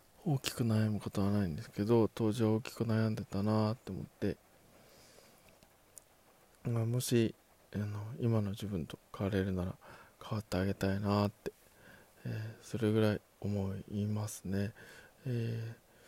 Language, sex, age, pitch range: Japanese, male, 20-39, 100-115 Hz